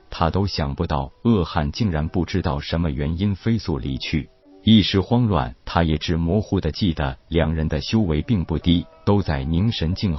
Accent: native